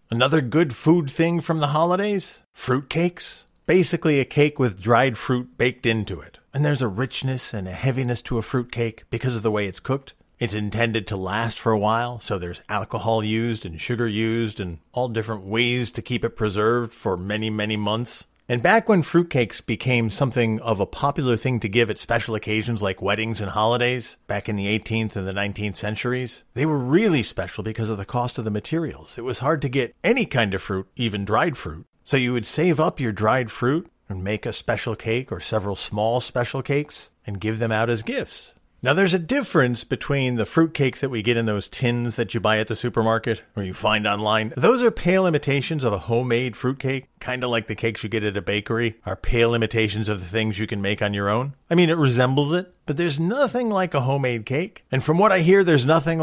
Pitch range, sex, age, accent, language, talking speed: 110-140 Hz, male, 40-59, American, English, 220 wpm